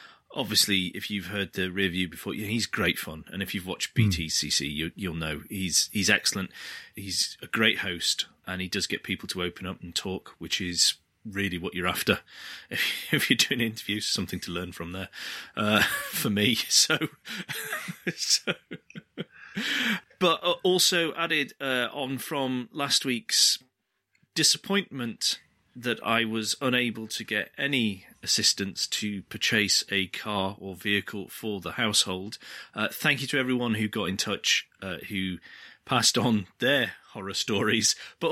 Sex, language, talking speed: male, English, 160 wpm